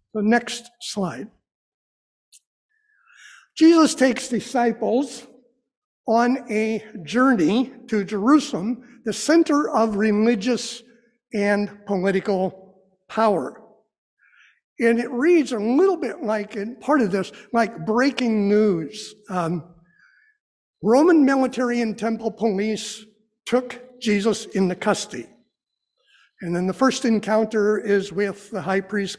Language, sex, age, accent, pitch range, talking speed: English, male, 60-79, American, 205-245 Hz, 105 wpm